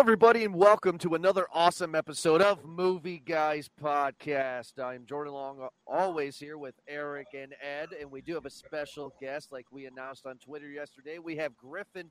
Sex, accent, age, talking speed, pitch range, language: male, American, 40-59, 185 wpm, 120-165 Hz, English